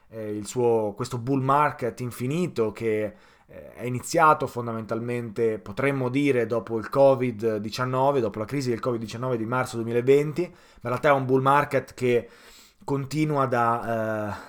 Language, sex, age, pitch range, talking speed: Italian, male, 20-39, 115-145 Hz, 140 wpm